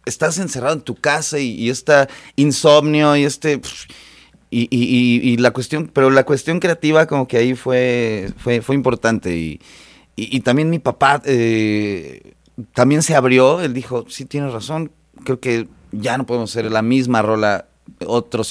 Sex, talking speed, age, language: male, 170 wpm, 30-49, Spanish